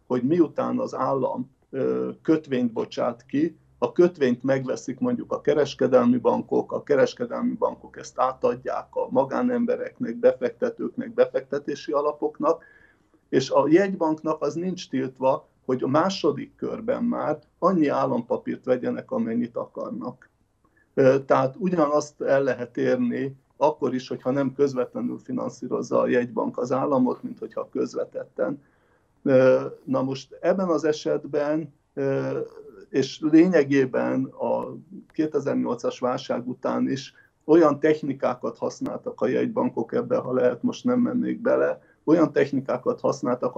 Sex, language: male, Hungarian